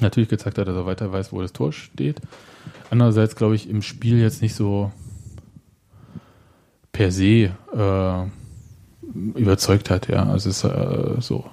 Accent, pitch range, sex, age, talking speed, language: German, 100-115 Hz, male, 20-39, 155 wpm, German